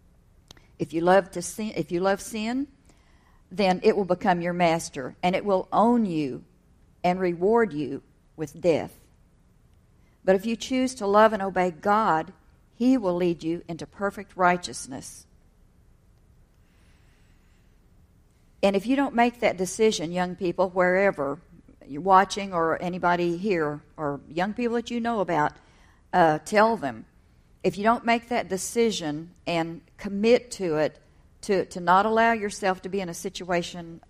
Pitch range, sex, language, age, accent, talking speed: 165-215 Hz, female, English, 50-69, American, 150 wpm